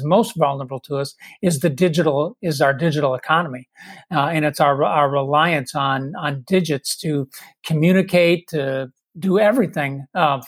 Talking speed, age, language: 150 wpm, 50-69, English